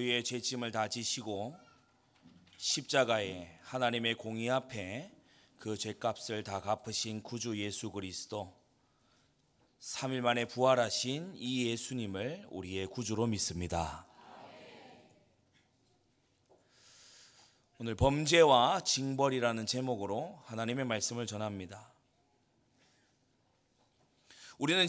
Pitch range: 115-145 Hz